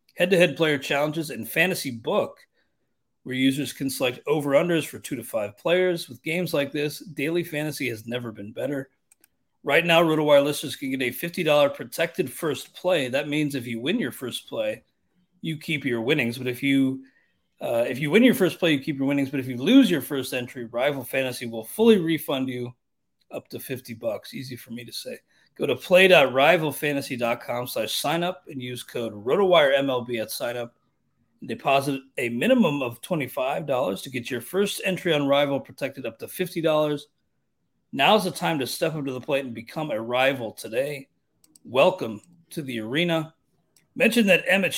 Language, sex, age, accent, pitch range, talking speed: English, male, 30-49, American, 125-165 Hz, 180 wpm